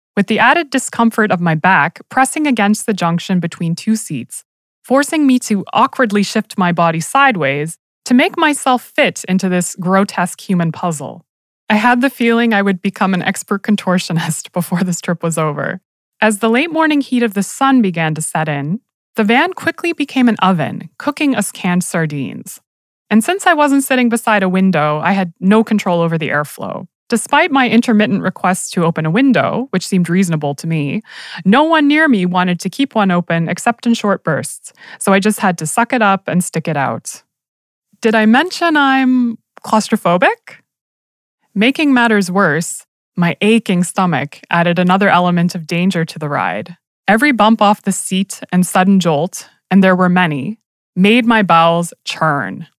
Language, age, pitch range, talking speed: English, 20-39, 175-245 Hz, 175 wpm